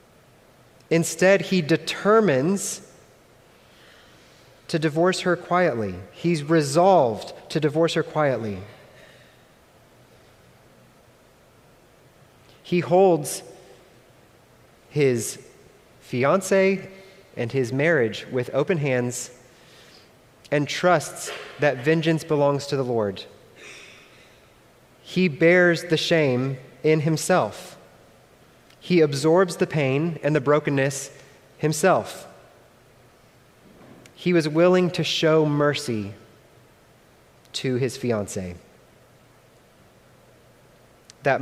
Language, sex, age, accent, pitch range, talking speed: English, male, 30-49, American, 130-175 Hz, 80 wpm